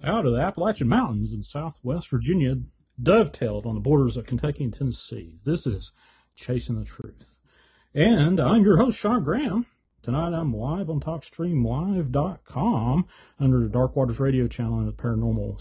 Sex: male